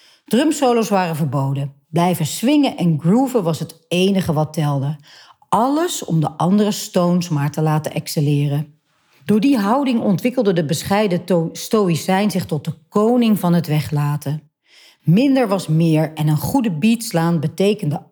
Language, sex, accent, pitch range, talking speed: Dutch, female, Dutch, 155-215 Hz, 145 wpm